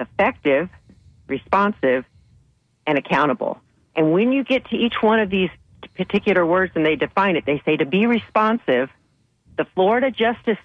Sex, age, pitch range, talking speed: female, 50-69, 145-210 Hz, 150 wpm